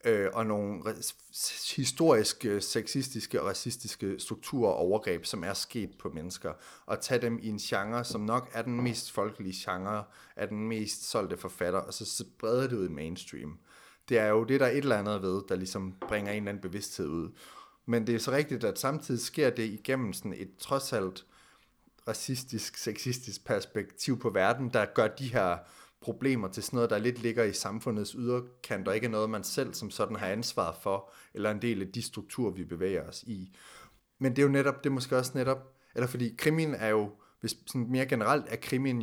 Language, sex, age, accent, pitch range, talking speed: Danish, male, 30-49, native, 100-125 Hz, 200 wpm